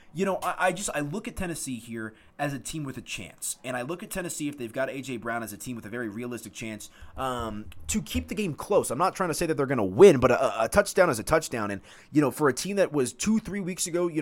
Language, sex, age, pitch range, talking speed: English, male, 20-39, 110-160 Hz, 295 wpm